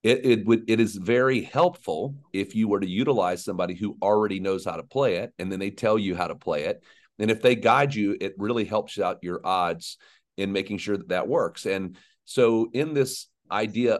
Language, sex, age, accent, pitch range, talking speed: English, male, 40-59, American, 90-115 Hz, 220 wpm